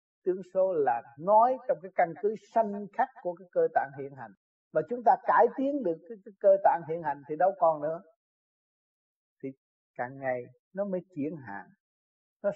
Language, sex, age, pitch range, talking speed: Vietnamese, male, 60-79, 170-250 Hz, 190 wpm